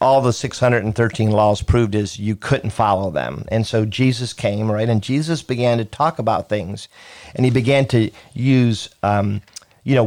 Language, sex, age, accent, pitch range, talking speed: English, male, 50-69, American, 105-125 Hz, 180 wpm